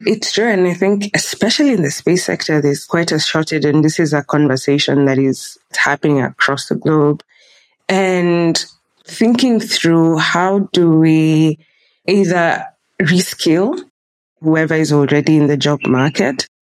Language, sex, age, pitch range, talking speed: English, female, 20-39, 145-175 Hz, 145 wpm